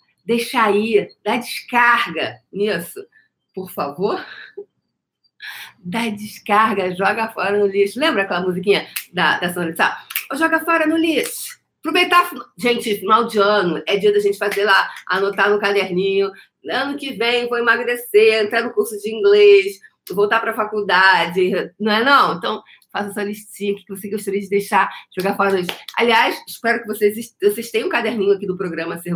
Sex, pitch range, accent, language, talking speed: female, 185-235 Hz, Brazilian, Portuguese, 165 wpm